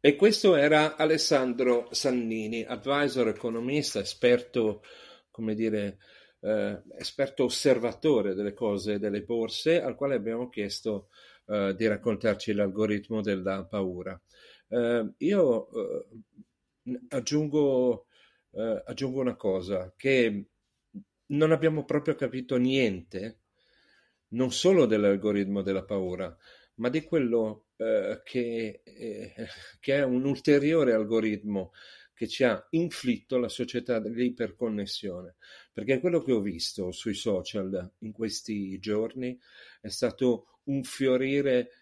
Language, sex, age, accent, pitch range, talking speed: Italian, male, 50-69, native, 105-140 Hz, 110 wpm